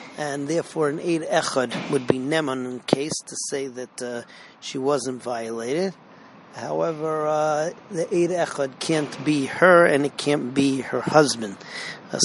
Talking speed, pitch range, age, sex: 155 wpm, 135-155 Hz, 40-59, male